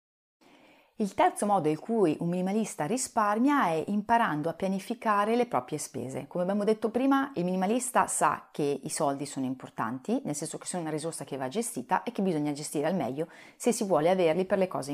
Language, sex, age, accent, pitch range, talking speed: Italian, female, 30-49, native, 155-220 Hz, 195 wpm